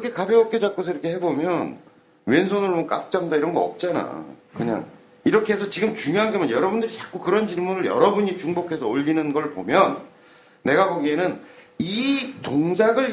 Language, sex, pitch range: Korean, male, 150-225 Hz